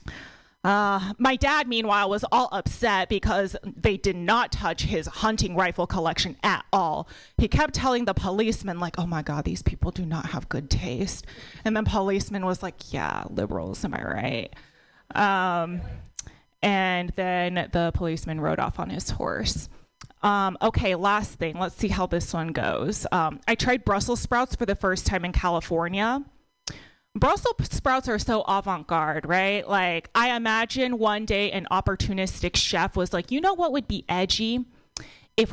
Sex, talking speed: female, 165 wpm